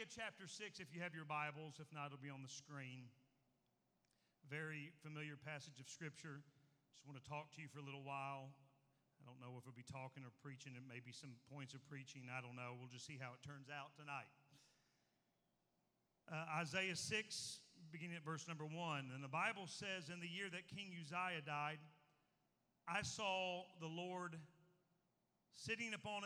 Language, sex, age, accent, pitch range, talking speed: English, male, 40-59, American, 145-190 Hz, 185 wpm